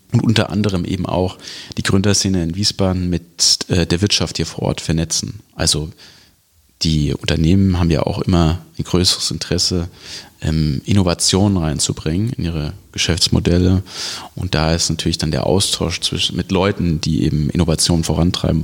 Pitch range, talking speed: 85-105 Hz, 140 wpm